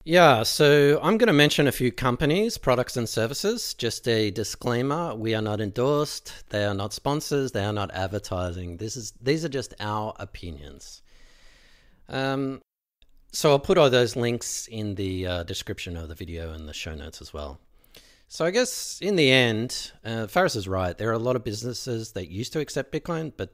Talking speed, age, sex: 190 wpm, 40-59, male